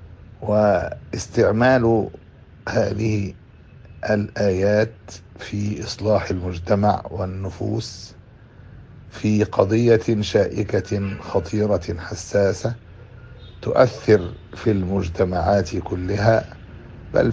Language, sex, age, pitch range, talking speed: Arabic, male, 60-79, 90-110 Hz, 60 wpm